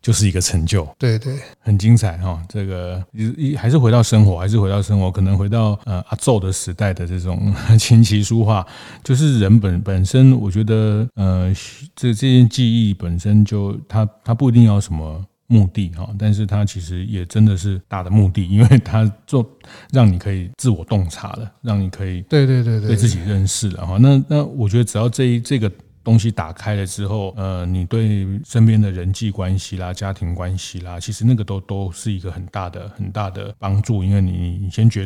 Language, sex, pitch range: Chinese, male, 95-110 Hz